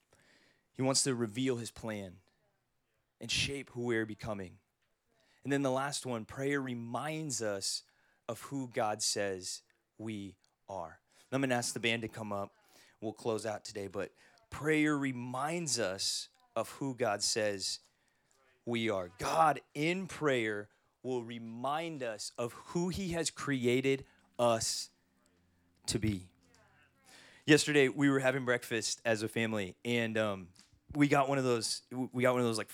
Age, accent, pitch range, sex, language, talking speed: 30-49, American, 110-140 Hz, male, English, 150 wpm